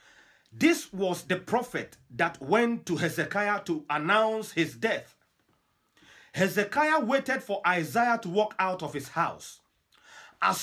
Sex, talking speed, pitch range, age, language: male, 130 wpm, 175-235 Hz, 40-59, English